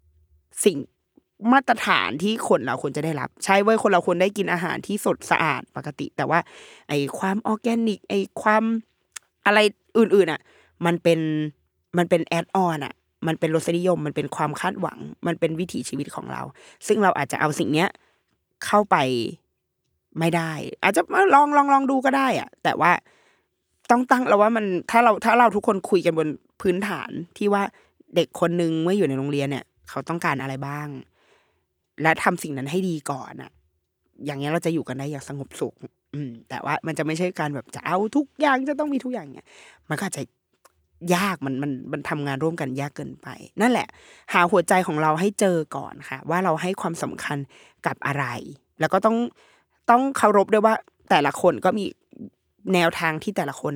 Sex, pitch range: female, 145-205 Hz